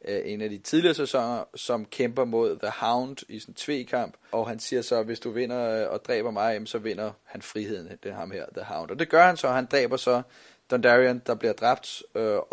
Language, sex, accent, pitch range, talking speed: Danish, male, native, 120-145 Hz, 225 wpm